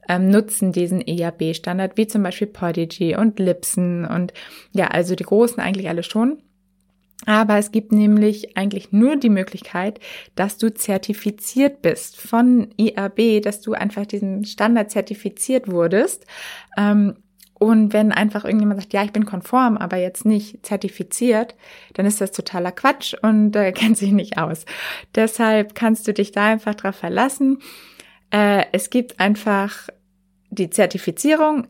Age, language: 20-39, German